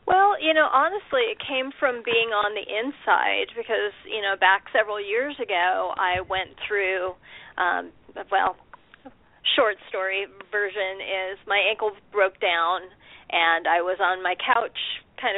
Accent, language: American, English